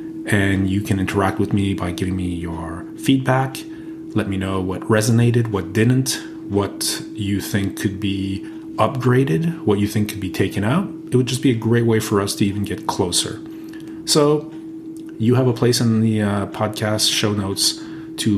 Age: 30-49